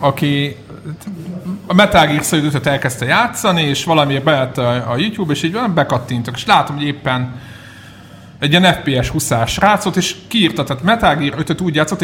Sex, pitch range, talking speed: male, 135-175 Hz, 140 wpm